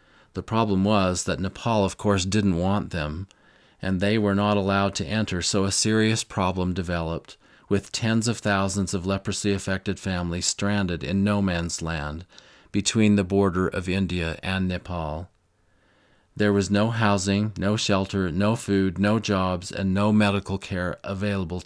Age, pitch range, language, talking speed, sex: 40-59, 95-105 Hz, English, 155 wpm, male